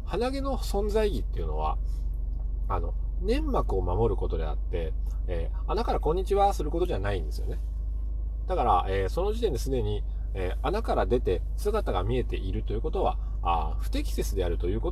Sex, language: male, Japanese